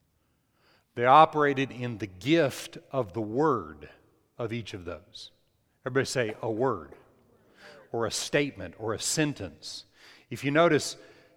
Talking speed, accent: 130 wpm, American